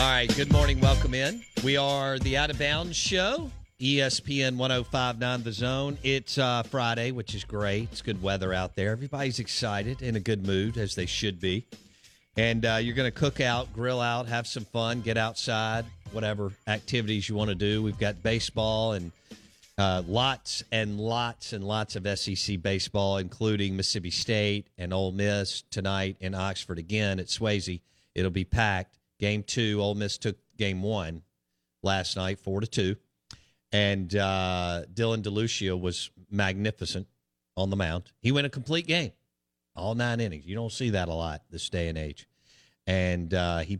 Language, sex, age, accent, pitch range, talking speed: English, male, 50-69, American, 95-115 Hz, 175 wpm